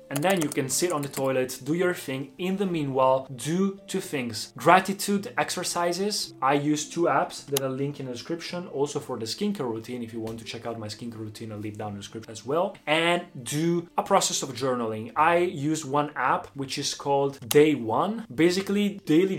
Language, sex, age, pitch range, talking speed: Italian, male, 20-39, 130-170 Hz, 205 wpm